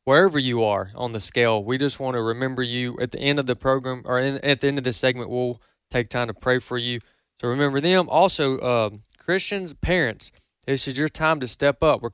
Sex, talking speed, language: male, 235 wpm, English